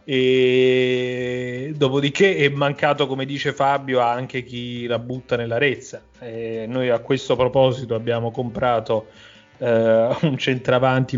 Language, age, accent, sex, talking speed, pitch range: Italian, 30-49, native, male, 125 wpm, 115-135 Hz